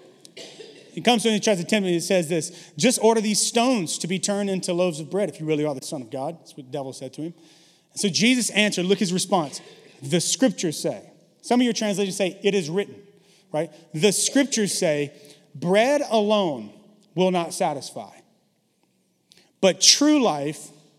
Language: English